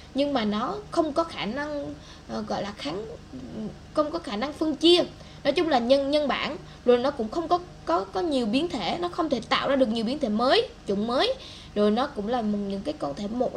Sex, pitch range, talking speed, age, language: female, 220-305 Hz, 235 wpm, 10-29, Vietnamese